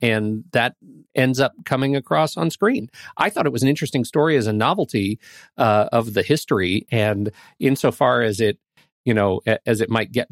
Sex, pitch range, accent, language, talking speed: male, 110-140 Hz, American, English, 185 wpm